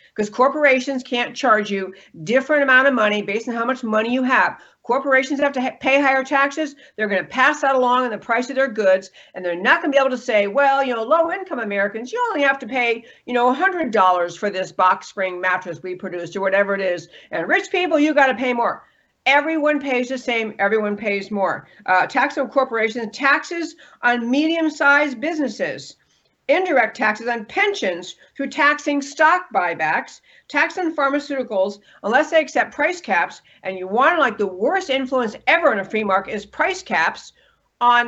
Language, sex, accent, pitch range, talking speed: English, female, American, 195-280 Hz, 195 wpm